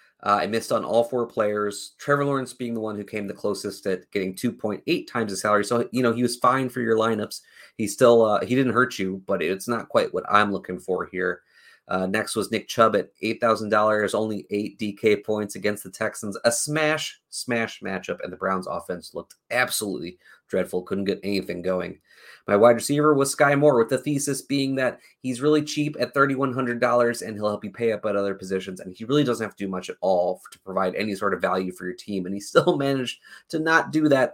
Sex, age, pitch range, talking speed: male, 30-49, 100-125 Hz, 225 wpm